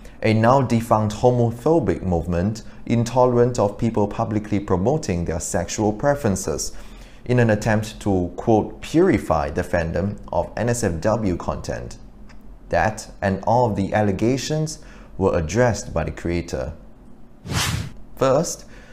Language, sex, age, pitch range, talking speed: English, male, 30-49, 90-115 Hz, 110 wpm